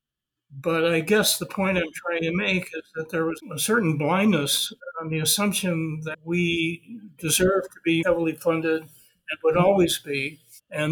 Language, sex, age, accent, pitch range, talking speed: English, male, 60-79, American, 155-185 Hz, 170 wpm